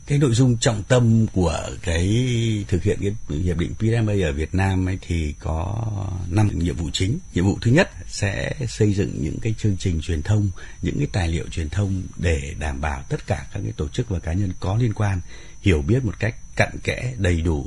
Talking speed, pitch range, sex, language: 220 wpm, 80-105 Hz, male, Vietnamese